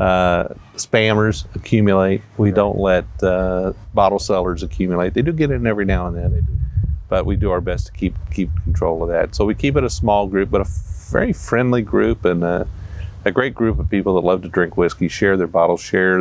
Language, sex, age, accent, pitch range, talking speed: English, male, 40-59, American, 90-110 Hz, 220 wpm